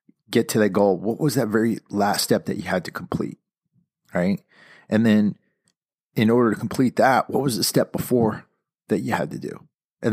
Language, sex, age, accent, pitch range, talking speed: English, male, 30-49, American, 95-140 Hz, 200 wpm